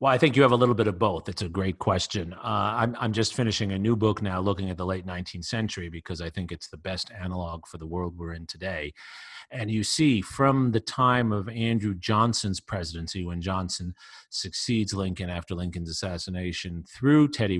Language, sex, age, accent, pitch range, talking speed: English, male, 40-59, American, 90-115 Hz, 210 wpm